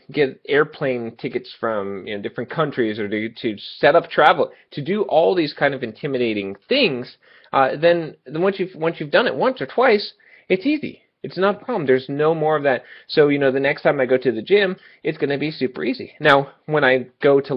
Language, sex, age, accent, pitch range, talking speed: English, male, 20-39, American, 120-165 Hz, 230 wpm